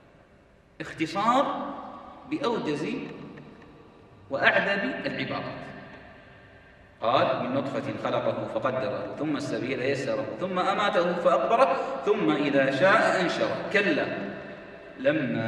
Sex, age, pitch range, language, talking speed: male, 30-49, 175-270 Hz, Arabic, 80 wpm